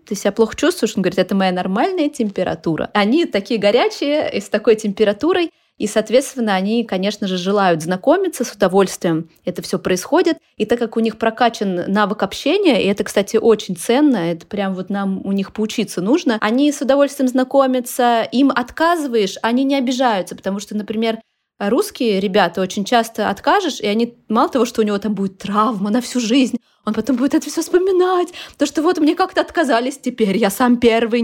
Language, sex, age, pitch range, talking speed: Russian, female, 20-39, 205-275 Hz, 185 wpm